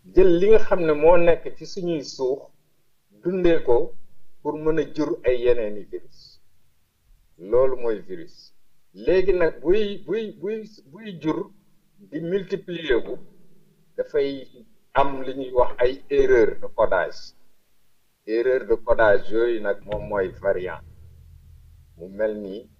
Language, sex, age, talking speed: English, male, 60-79, 40 wpm